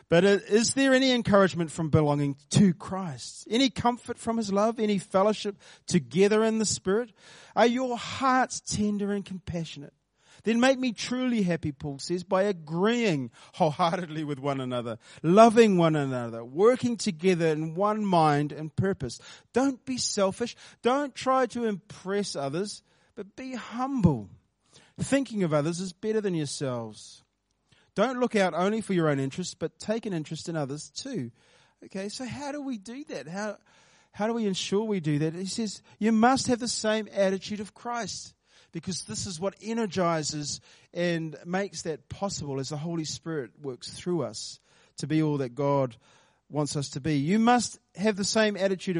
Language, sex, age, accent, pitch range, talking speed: English, male, 40-59, Australian, 155-220 Hz, 170 wpm